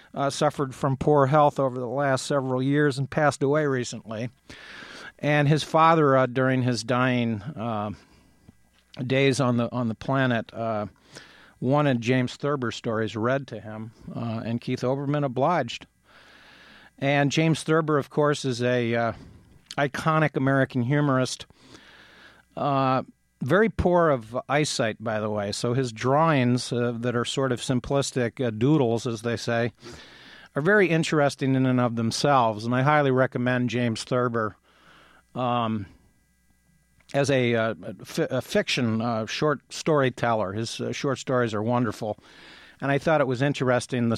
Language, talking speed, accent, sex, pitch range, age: English, 150 wpm, American, male, 115-140 Hz, 50-69